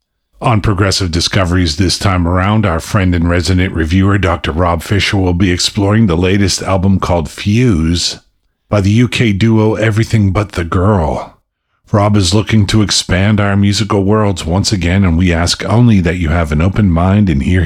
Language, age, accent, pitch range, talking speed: English, 50-69, American, 85-110 Hz, 175 wpm